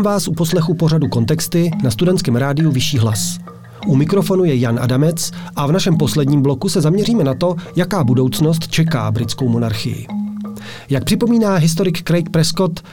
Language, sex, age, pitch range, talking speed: Czech, male, 40-59, 140-180 Hz, 160 wpm